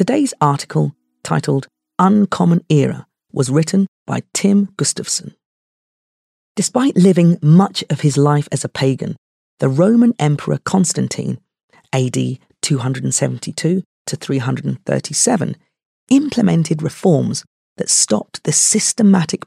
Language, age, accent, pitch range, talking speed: English, 40-59, British, 135-195 Hz, 95 wpm